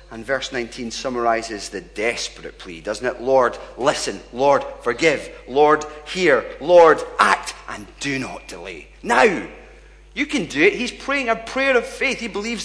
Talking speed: 160 wpm